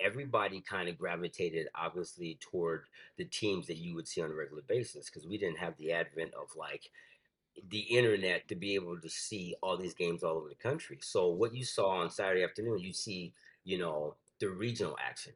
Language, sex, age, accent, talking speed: English, male, 40-59, American, 205 wpm